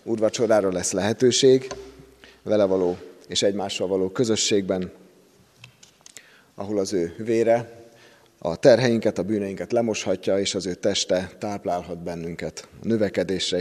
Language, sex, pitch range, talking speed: Hungarian, male, 95-120 Hz, 115 wpm